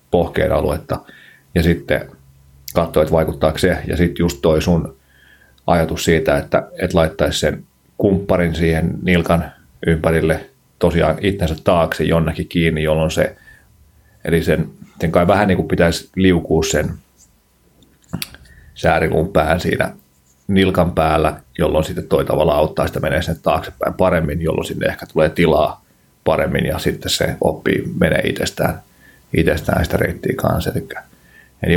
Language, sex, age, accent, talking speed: Finnish, male, 30-49, native, 130 wpm